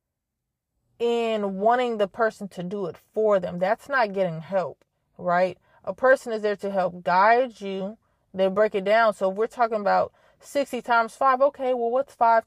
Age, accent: 20-39, American